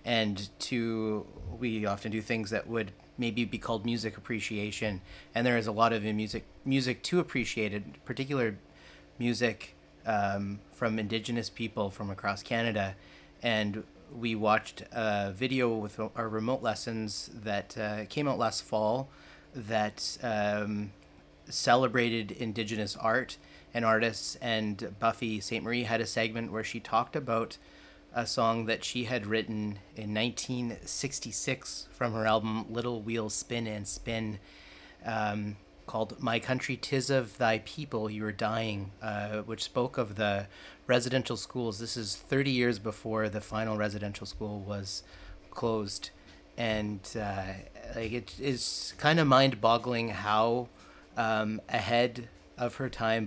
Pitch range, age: 100-120 Hz, 30-49